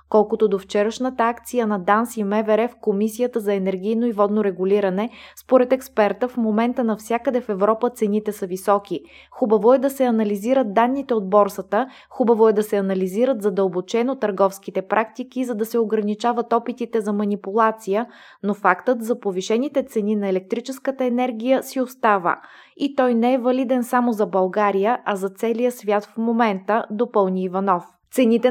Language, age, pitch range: Bulgarian, 20-39, 205-250 Hz